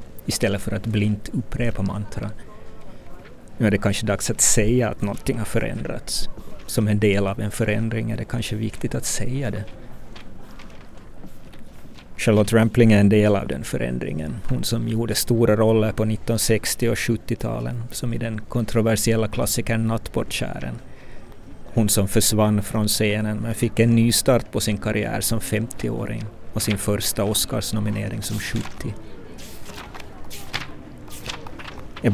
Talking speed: 140 wpm